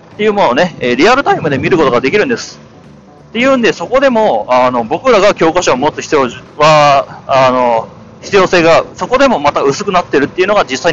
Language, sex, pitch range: Japanese, male, 130-215 Hz